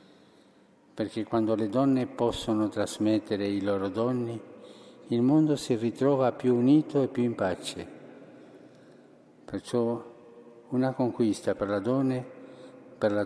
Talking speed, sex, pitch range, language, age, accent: 115 wpm, male, 105-130 Hz, Italian, 50-69, native